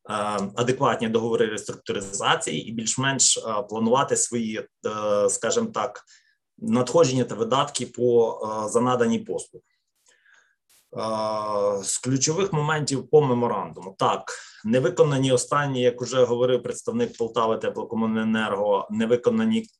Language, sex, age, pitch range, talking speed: Ukrainian, male, 20-39, 115-175 Hz, 90 wpm